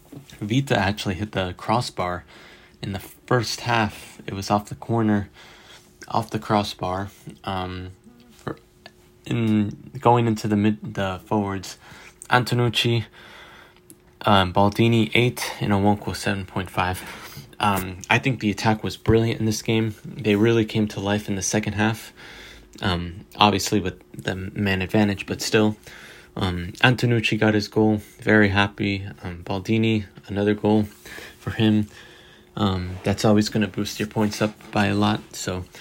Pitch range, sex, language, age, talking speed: 95-110 Hz, male, English, 20-39, 140 wpm